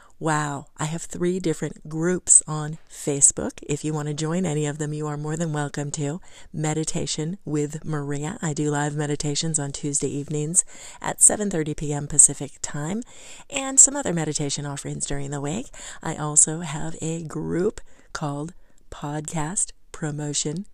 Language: English